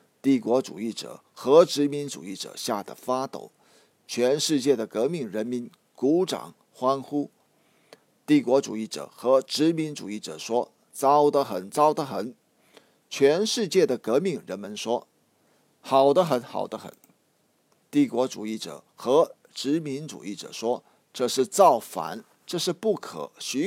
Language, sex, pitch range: Chinese, male, 125-175 Hz